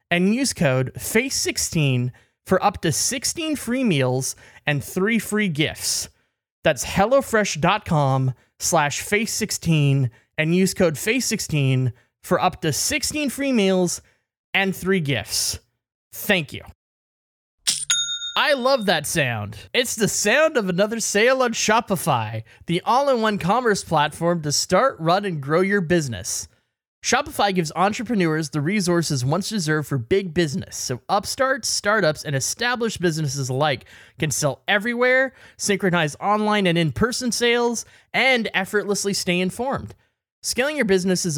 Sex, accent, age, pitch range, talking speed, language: male, American, 20-39, 140-210 Hz, 130 wpm, English